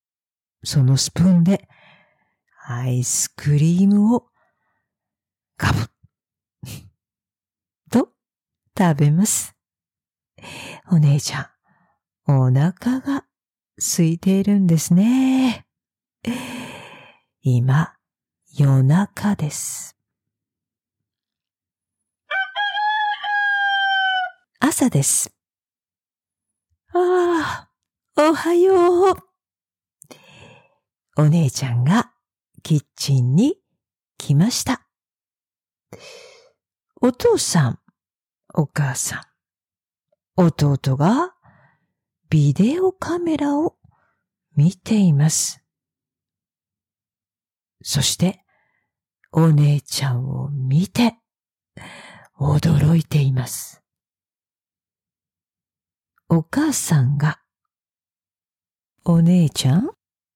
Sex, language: female, English